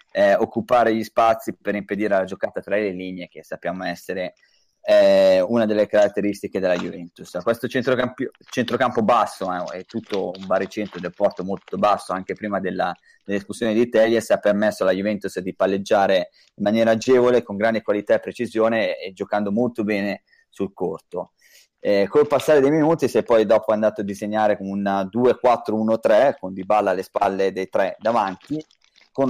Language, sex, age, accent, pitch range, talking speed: Italian, male, 20-39, native, 100-120 Hz, 170 wpm